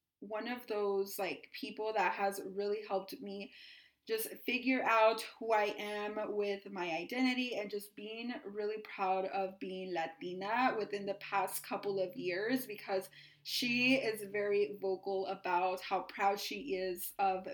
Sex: female